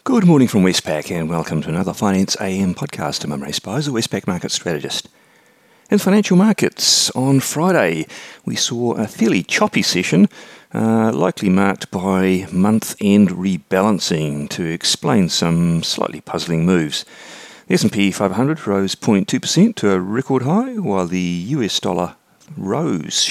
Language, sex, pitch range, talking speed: English, male, 85-145 Hz, 140 wpm